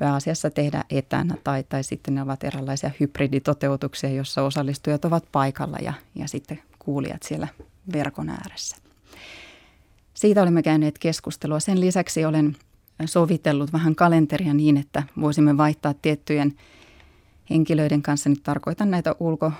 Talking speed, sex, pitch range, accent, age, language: 130 wpm, female, 140-160 Hz, native, 30-49, Finnish